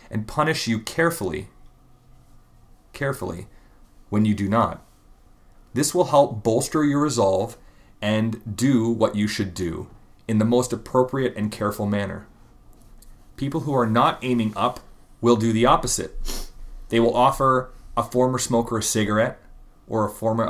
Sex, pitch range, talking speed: male, 105-120 Hz, 145 wpm